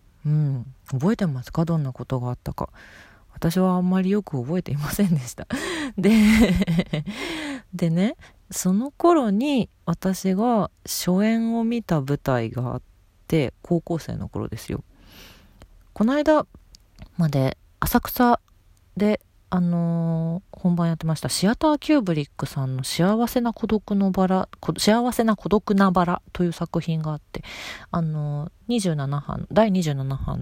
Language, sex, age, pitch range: Japanese, female, 40-59, 130-200 Hz